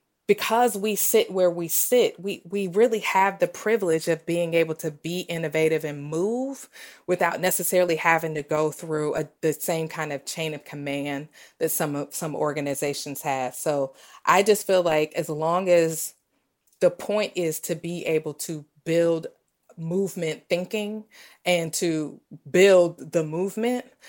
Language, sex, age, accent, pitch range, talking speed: English, female, 30-49, American, 155-195 Hz, 155 wpm